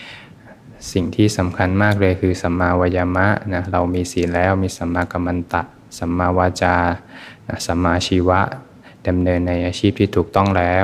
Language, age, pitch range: Thai, 20-39, 90-100 Hz